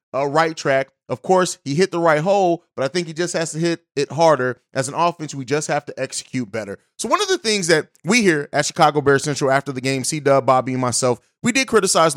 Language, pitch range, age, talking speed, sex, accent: English, 155-195 Hz, 30-49, 250 wpm, male, American